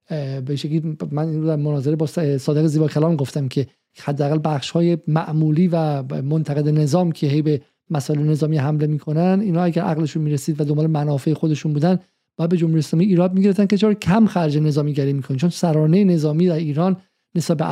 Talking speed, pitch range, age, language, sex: 175 wpm, 150-185 Hz, 50-69, Persian, male